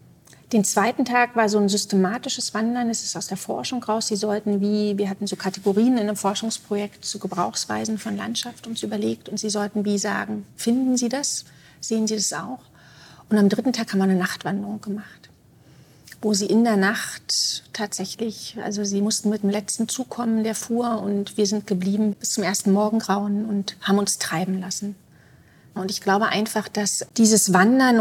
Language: German